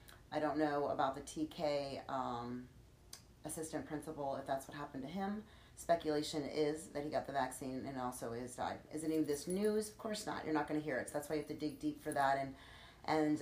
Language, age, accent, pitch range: English, 40-59, American, 140-160 Hz